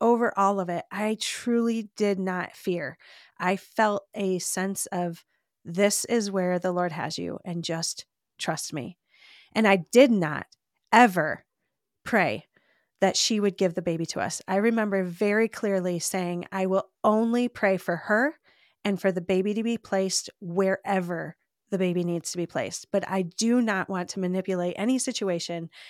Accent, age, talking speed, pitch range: American, 30-49, 170 wpm, 180-215 Hz